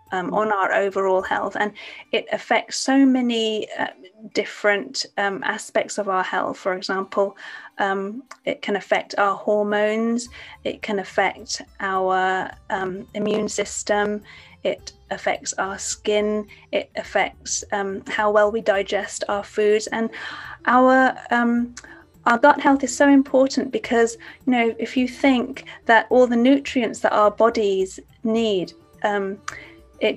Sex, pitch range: female, 205-235 Hz